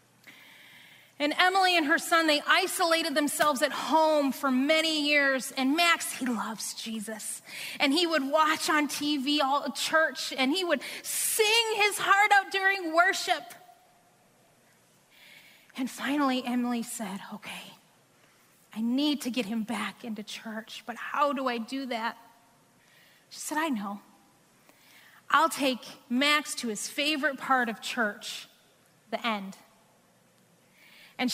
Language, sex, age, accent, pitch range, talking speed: English, female, 30-49, American, 240-330 Hz, 135 wpm